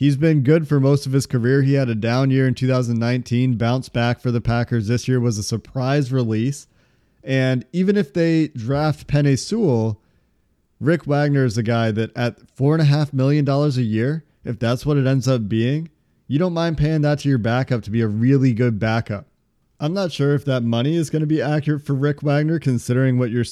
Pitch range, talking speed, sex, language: 120-145 Hz, 220 wpm, male, English